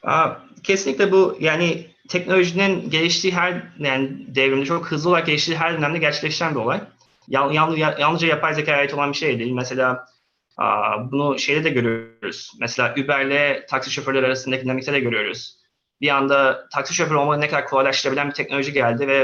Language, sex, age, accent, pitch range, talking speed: Turkish, male, 20-39, native, 135-170 Hz, 160 wpm